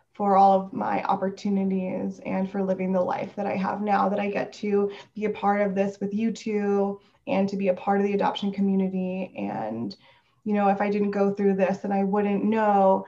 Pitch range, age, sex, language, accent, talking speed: 195-215 Hz, 20-39, female, English, American, 220 wpm